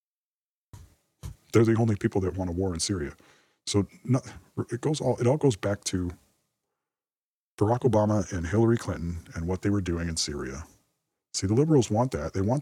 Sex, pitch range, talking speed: male, 85-105 Hz, 180 wpm